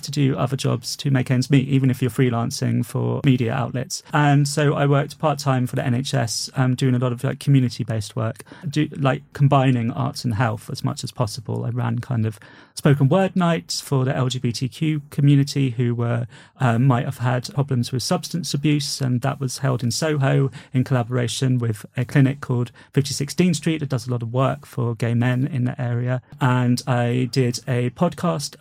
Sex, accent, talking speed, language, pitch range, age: male, British, 195 wpm, English, 125-140 Hz, 30-49